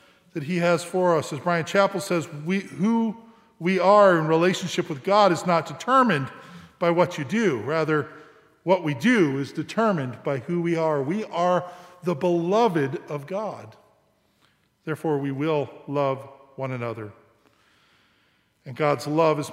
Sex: male